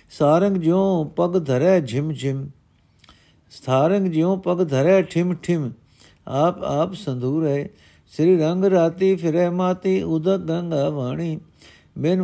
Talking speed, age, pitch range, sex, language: 125 wpm, 50-69, 135-165 Hz, male, Punjabi